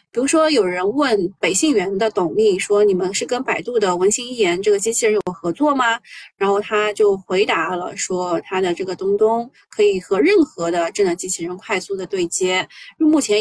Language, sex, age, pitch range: Chinese, female, 20-39, 200-335 Hz